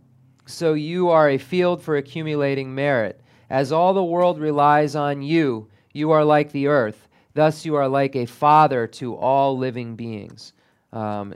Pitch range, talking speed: 120-150 Hz, 165 wpm